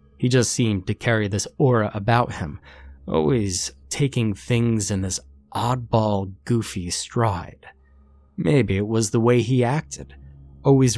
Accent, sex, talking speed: American, male, 135 wpm